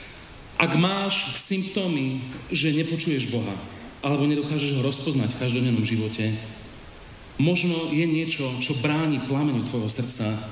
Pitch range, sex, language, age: 105-135 Hz, male, Slovak, 40-59